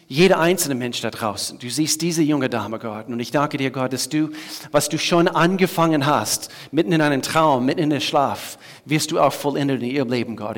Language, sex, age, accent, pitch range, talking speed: German, male, 40-59, German, 130-160 Hz, 220 wpm